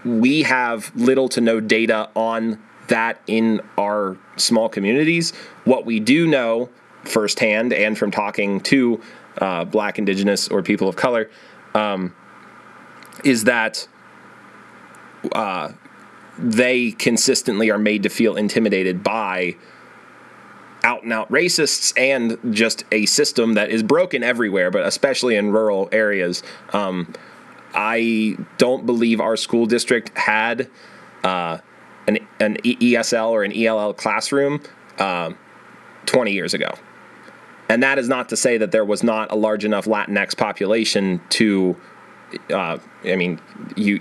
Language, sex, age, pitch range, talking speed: English, male, 30-49, 105-115 Hz, 130 wpm